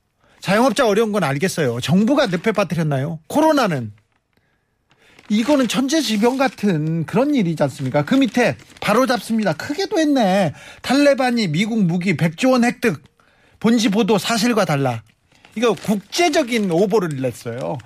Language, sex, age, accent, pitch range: Korean, male, 40-59, native, 155-245 Hz